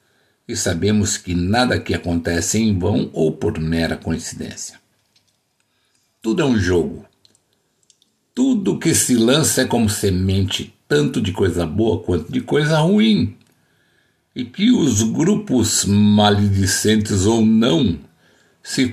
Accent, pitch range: Brazilian, 95-120 Hz